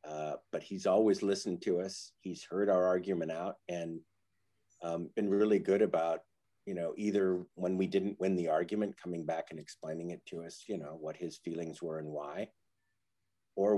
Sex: male